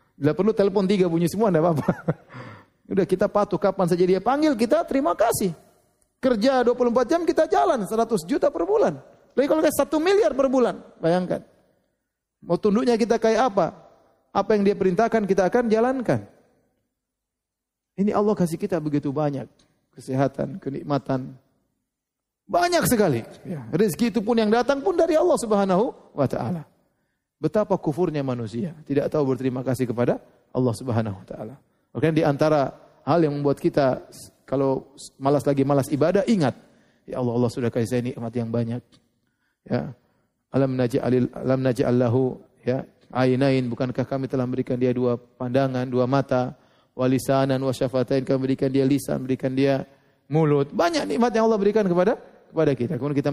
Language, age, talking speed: Indonesian, 30-49, 155 wpm